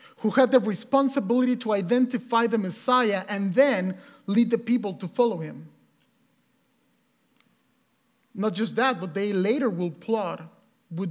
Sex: male